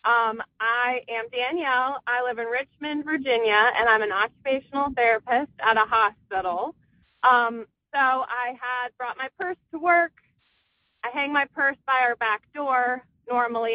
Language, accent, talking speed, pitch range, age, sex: English, American, 155 wpm, 240-315 Hz, 30-49, female